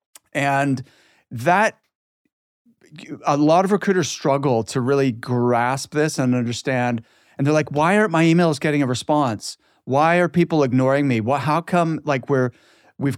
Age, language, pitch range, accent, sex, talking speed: 30-49, English, 130-160 Hz, American, male, 150 wpm